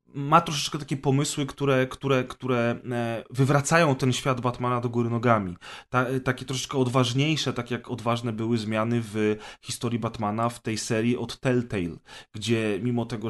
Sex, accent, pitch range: male, native, 115-130 Hz